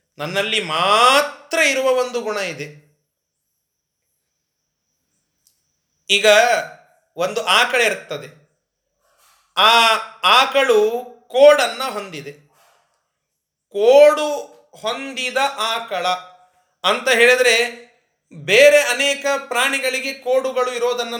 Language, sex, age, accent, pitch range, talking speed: Kannada, male, 30-49, native, 210-260 Hz, 70 wpm